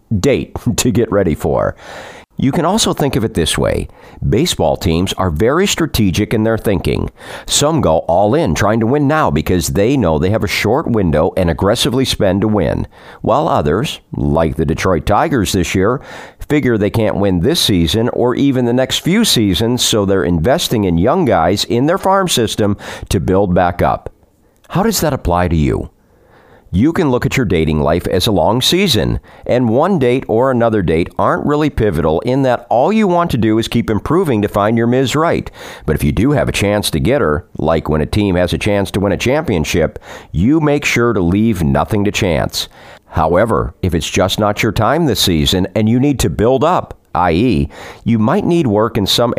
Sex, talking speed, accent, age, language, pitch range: male, 205 wpm, American, 50-69, English, 90-130 Hz